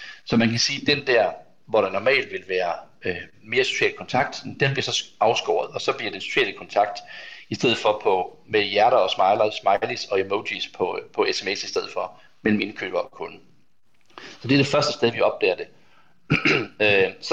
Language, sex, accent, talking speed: Danish, male, native, 195 wpm